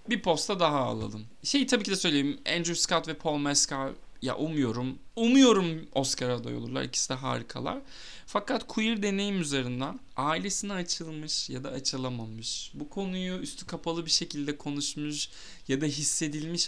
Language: Turkish